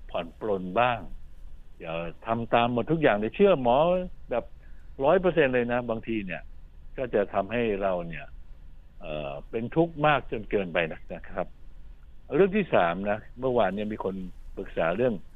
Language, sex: Thai, male